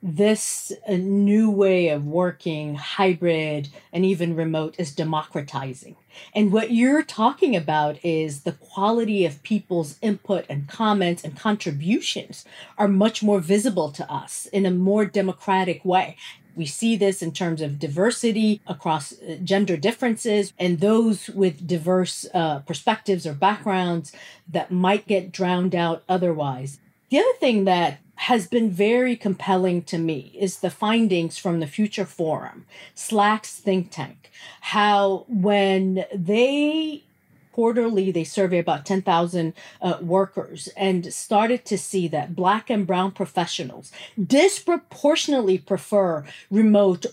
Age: 40-59